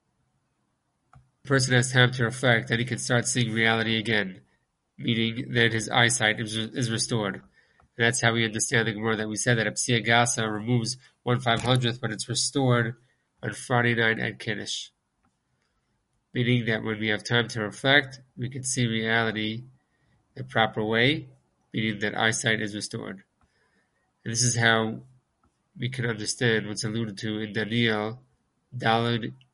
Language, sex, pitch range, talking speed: English, male, 110-130 Hz, 155 wpm